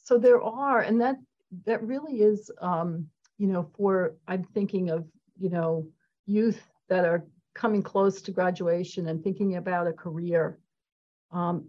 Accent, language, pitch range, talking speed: American, English, 180-215 Hz, 155 wpm